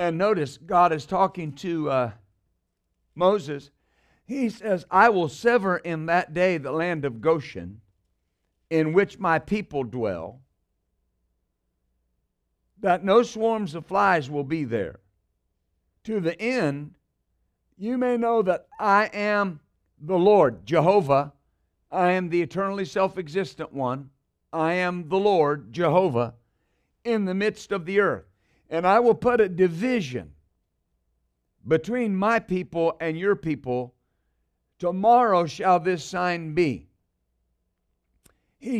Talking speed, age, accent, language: 125 wpm, 50-69, American, English